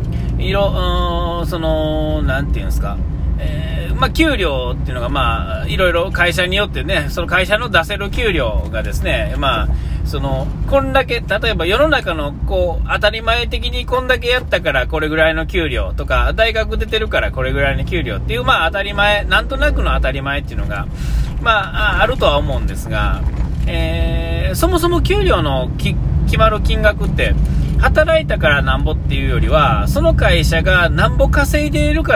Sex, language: male, Japanese